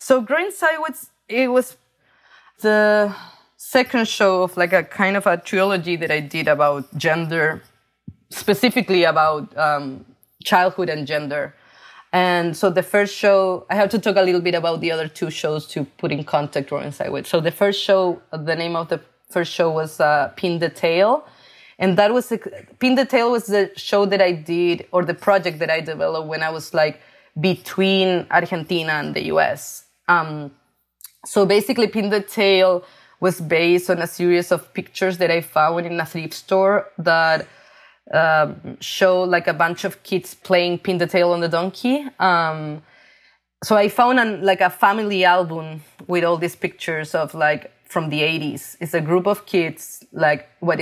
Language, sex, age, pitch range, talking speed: English, female, 20-39, 160-195 Hz, 180 wpm